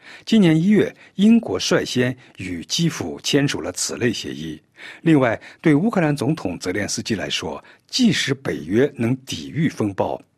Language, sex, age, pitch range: Chinese, male, 50-69, 120-195 Hz